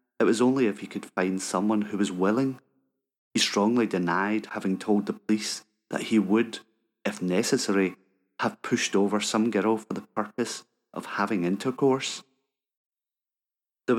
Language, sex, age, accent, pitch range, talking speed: English, male, 30-49, British, 100-130 Hz, 150 wpm